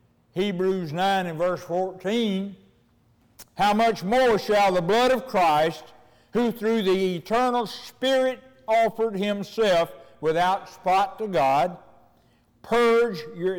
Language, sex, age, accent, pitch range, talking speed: English, male, 60-79, American, 150-210 Hz, 115 wpm